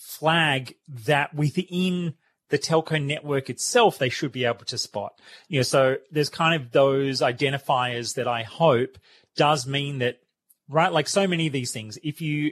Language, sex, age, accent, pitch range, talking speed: English, male, 30-49, Australian, 130-155 Hz, 175 wpm